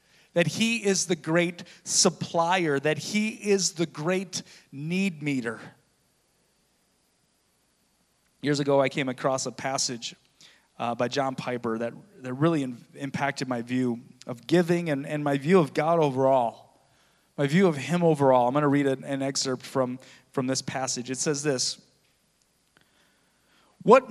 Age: 30-49